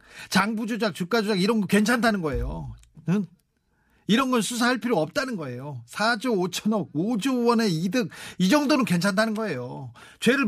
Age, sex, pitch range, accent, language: 40-59, male, 150-230 Hz, native, Korean